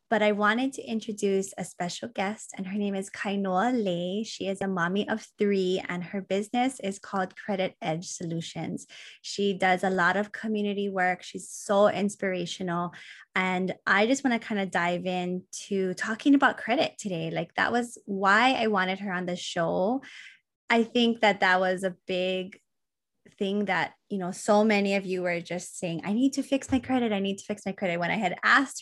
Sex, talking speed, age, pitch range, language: female, 200 wpm, 20-39, 185-235 Hz, English